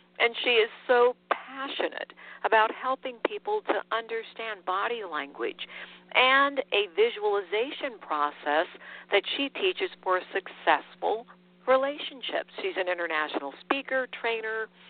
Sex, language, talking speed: female, English, 115 wpm